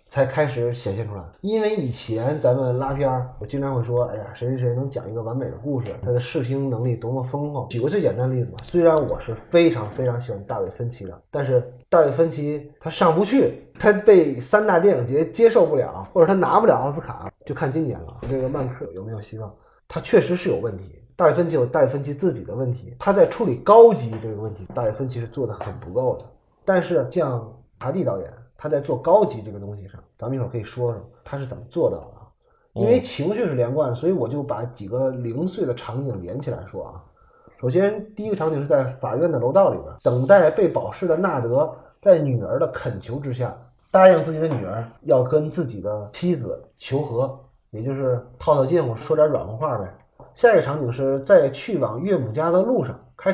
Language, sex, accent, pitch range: Chinese, male, native, 115-155 Hz